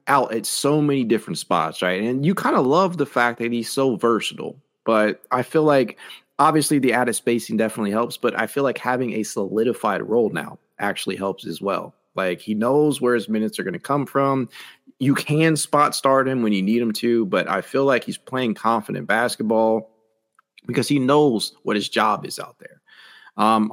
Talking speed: 200 wpm